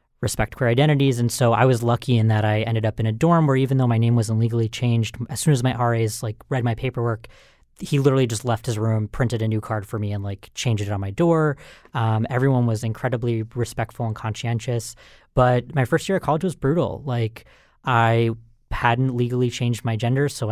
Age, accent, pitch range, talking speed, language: 20-39, American, 110-130 Hz, 220 wpm, English